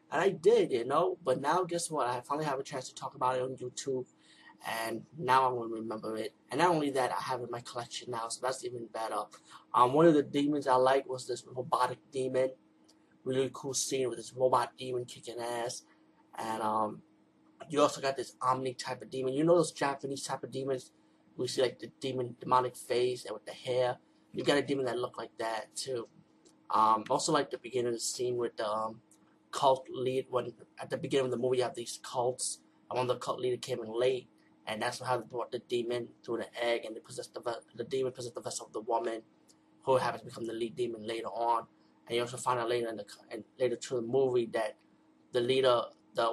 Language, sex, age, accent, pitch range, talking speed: English, male, 20-39, American, 115-130 Hz, 230 wpm